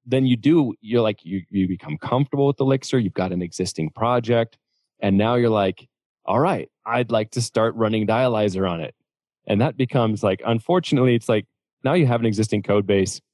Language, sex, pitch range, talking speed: English, male, 100-120 Hz, 200 wpm